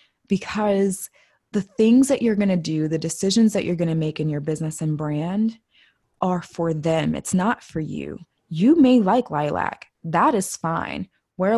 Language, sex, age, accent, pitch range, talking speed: English, female, 20-39, American, 160-205 Hz, 180 wpm